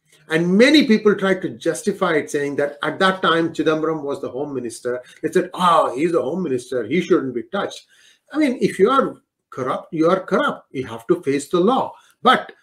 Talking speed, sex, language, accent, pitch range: 210 wpm, male, English, Indian, 155-205 Hz